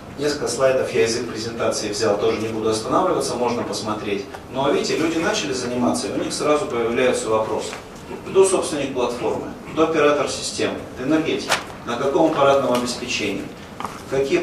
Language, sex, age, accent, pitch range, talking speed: Russian, male, 30-49, native, 110-145 Hz, 150 wpm